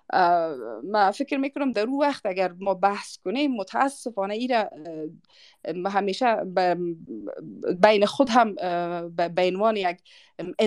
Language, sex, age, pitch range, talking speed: Persian, female, 30-49, 185-260 Hz, 110 wpm